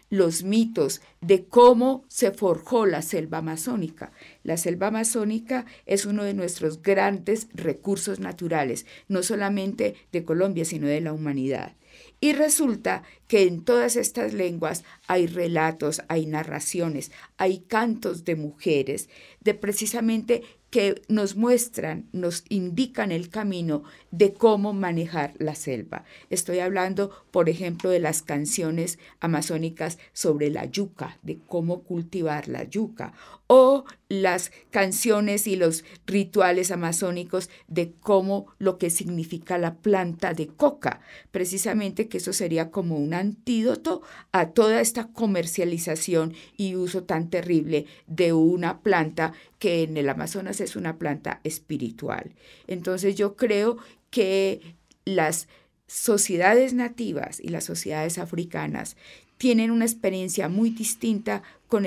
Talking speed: 125 wpm